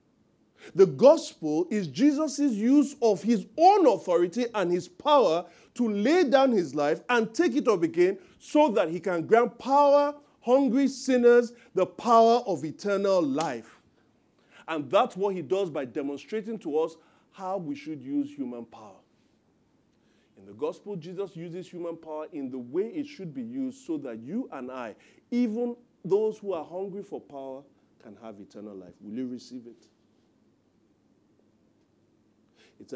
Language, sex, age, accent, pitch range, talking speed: English, male, 40-59, Nigerian, 155-245 Hz, 155 wpm